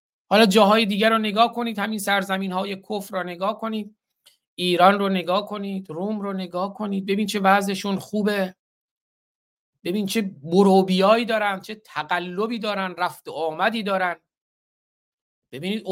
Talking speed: 130 wpm